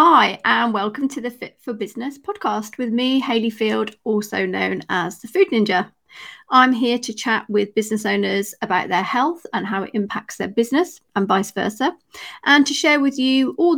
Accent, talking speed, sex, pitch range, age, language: British, 190 wpm, female, 215-295 Hz, 40-59, English